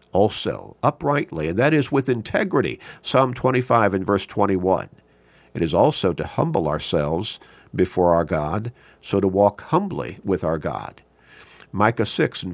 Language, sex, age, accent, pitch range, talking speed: English, male, 50-69, American, 90-125 Hz, 150 wpm